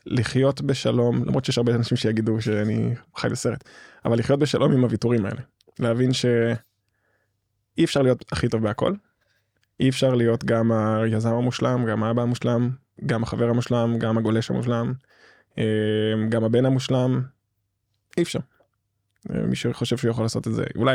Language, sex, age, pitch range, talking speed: Hebrew, male, 20-39, 110-125 Hz, 145 wpm